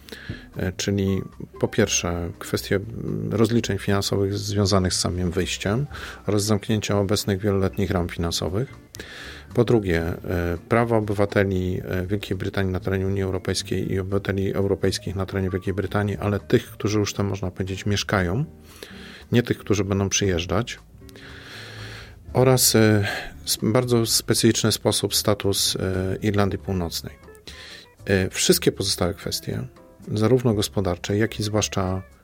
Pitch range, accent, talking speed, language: 95-105 Hz, native, 115 wpm, Polish